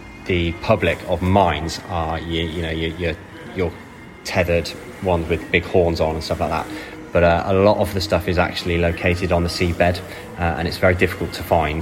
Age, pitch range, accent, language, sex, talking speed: 20-39, 85-95 Hz, British, English, male, 205 wpm